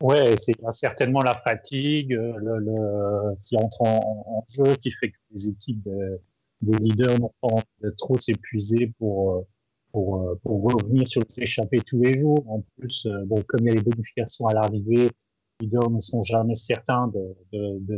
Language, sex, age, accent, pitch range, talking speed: French, male, 30-49, French, 105-120 Hz, 180 wpm